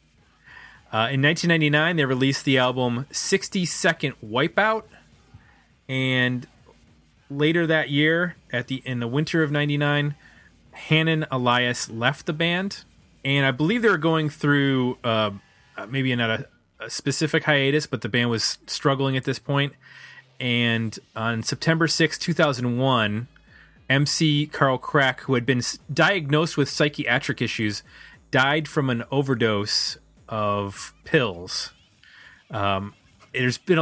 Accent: American